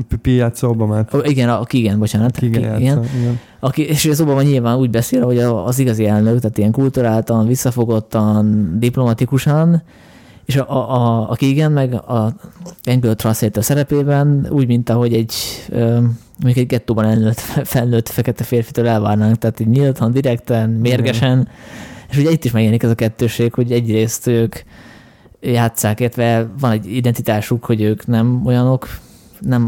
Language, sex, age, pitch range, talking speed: Hungarian, male, 20-39, 115-130 Hz, 130 wpm